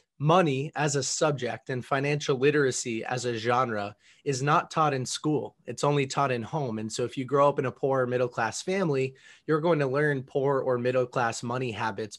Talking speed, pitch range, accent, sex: 200 wpm, 120-145 Hz, American, male